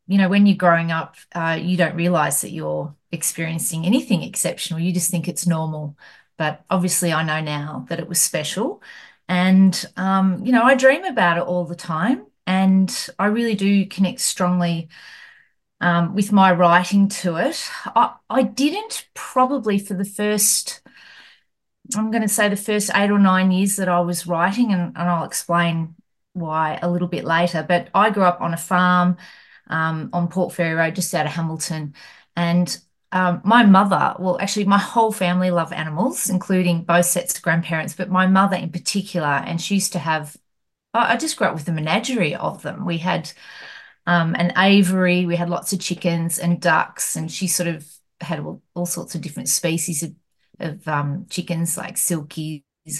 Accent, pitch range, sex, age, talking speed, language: Australian, 165-195 Hz, female, 30-49, 185 wpm, English